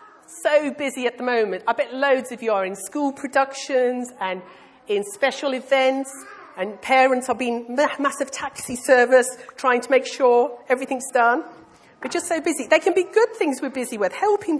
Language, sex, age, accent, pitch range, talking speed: English, female, 40-59, British, 235-310 Hz, 180 wpm